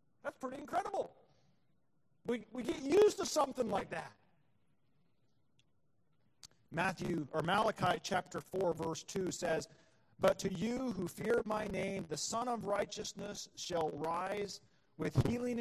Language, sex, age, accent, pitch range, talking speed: English, male, 40-59, American, 150-210 Hz, 130 wpm